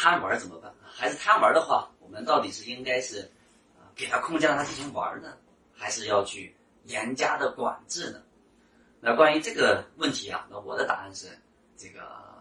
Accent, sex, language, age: native, male, Chinese, 30-49